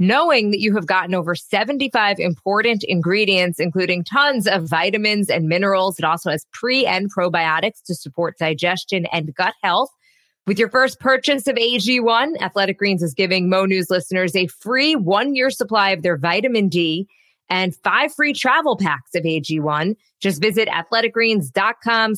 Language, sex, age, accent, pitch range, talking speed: English, female, 20-39, American, 170-215 Hz, 155 wpm